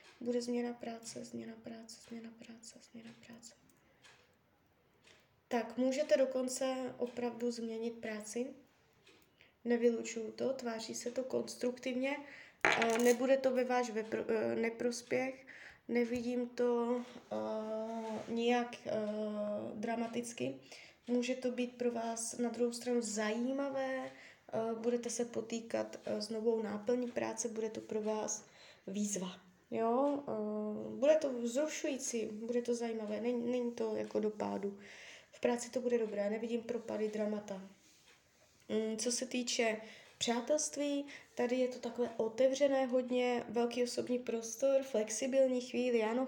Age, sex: 20-39, female